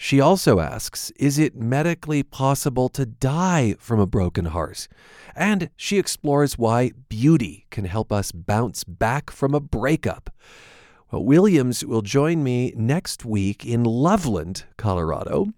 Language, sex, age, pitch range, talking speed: English, male, 40-59, 100-145 Hz, 135 wpm